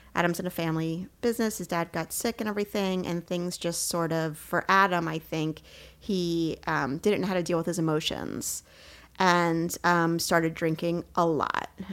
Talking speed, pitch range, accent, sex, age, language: 180 wpm, 165-185 Hz, American, female, 30-49, English